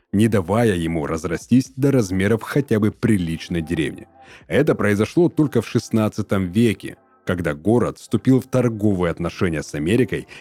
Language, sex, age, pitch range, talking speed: Russian, male, 30-49, 90-115 Hz, 140 wpm